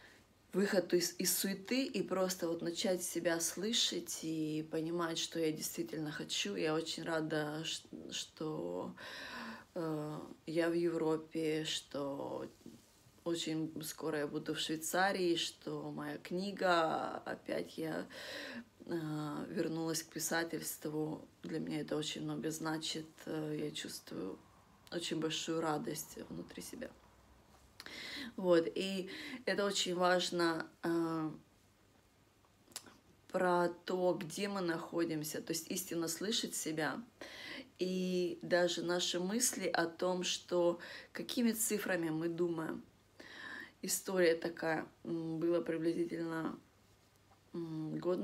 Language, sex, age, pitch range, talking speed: Russian, female, 20-39, 155-180 Hz, 105 wpm